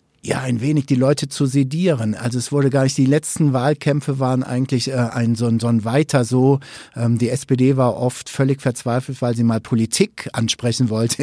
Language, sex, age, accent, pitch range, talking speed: German, male, 50-69, German, 125-170 Hz, 200 wpm